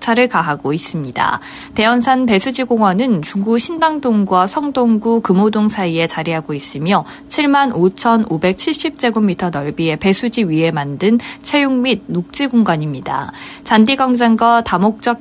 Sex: female